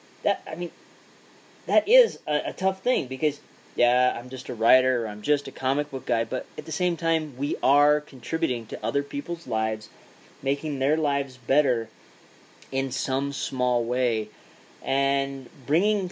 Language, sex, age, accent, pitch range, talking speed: English, male, 30-49, American, 125-150 Hz, 165 wpm